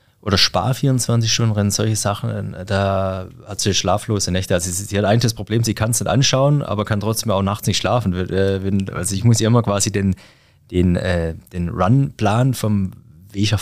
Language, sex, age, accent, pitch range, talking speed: German, male, 30-49, German, 95-115 Hz, 185 wpm